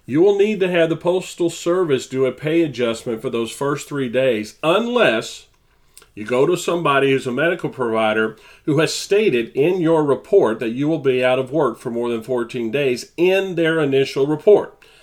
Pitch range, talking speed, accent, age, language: 120-160 Hz, 190 wpm, American, 40-59, English